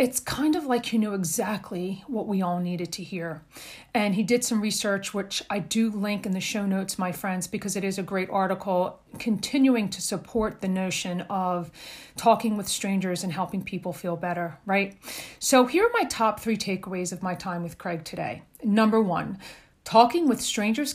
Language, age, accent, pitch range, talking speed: English, 40-59, American, 185-235 Hz, 190 wpm